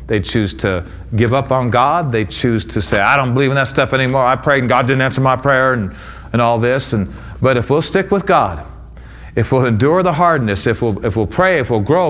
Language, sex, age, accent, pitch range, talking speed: English, male, 40-59, American, 95-135 Hz, 240 wpm